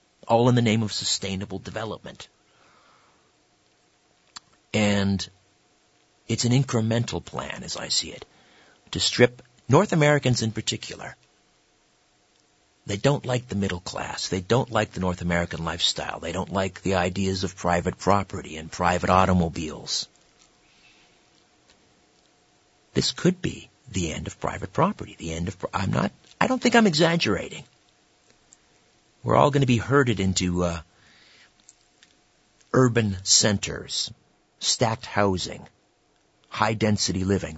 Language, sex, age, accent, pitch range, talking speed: English, male, 50-69, American, 90-120 Hz, 125 wpm